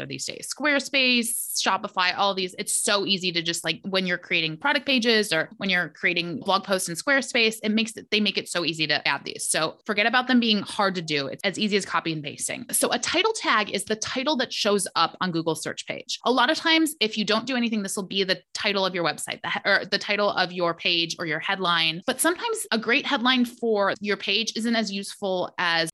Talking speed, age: 240 wpm, 20-39